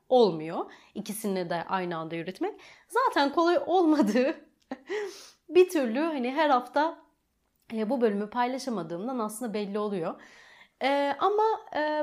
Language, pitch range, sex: Turkish, 200-320 Hz, female